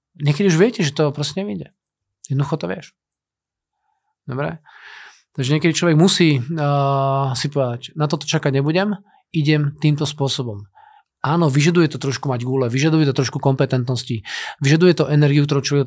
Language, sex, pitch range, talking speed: Slovak, male, 135-165 Hz, 155 wpm